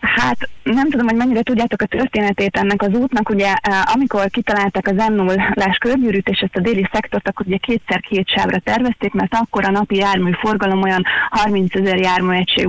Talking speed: 175 wpm